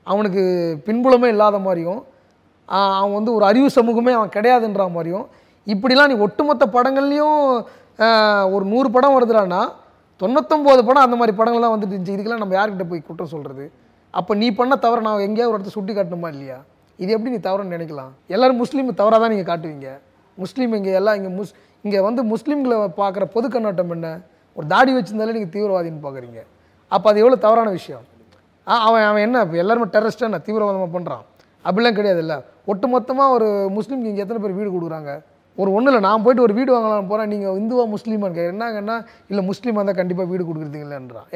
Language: Tamil